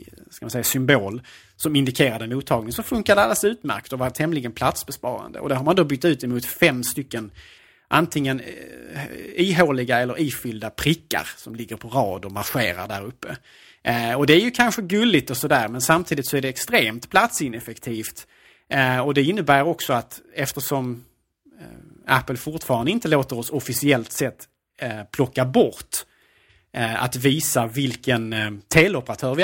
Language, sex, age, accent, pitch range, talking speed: Swedish, male, 30-49, Norwegian, 115-145 Hz, 165 wpm